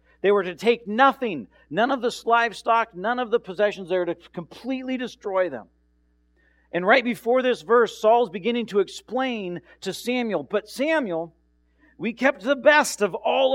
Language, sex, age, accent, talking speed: English, male, 50-69, American, 170 wpm